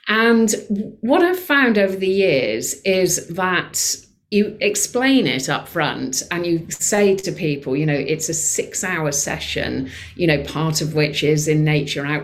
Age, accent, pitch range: 50-69, British, 145-195 Hz